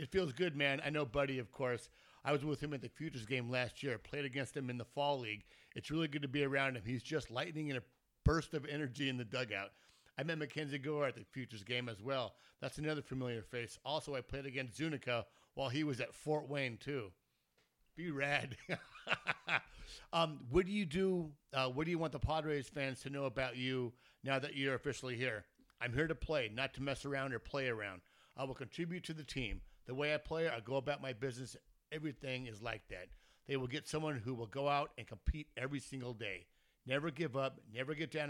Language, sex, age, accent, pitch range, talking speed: English, male, 50-69, American, 125-150 Hz, 225 wpm